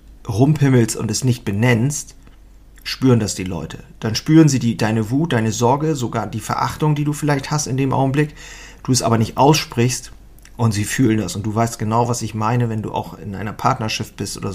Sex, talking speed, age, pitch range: male, 210 wpm, 40-59, 110-135 Hz